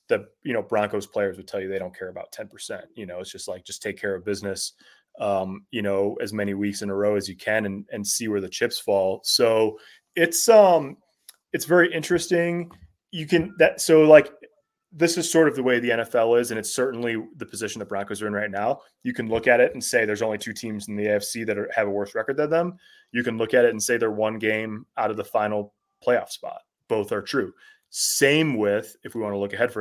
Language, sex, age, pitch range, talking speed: English, male, 20-39, 100-145 Hz, 250 wpm